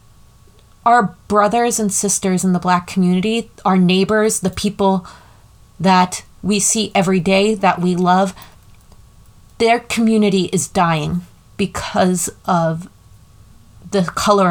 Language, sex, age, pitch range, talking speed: English, female, 30-49, 160-200 Hz, 115 wpm